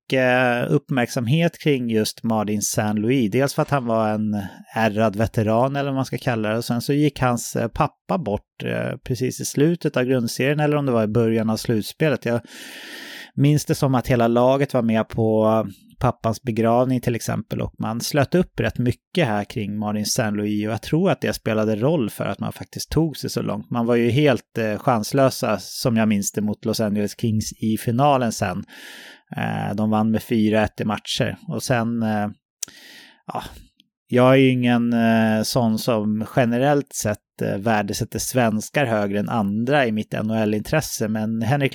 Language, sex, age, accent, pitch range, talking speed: English, male, 30-49, Swedish, 110-140 Hz, 170 wpm